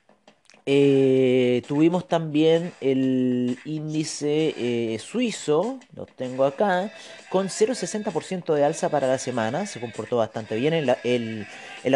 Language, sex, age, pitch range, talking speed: Spanish, male, 30-49, 130-165 Hz, 120 wpm